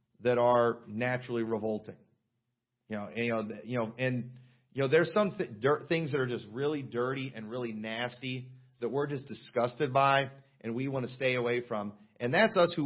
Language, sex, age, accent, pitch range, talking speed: English, male, 40-59, American, 115-150 Hz, 185 wpm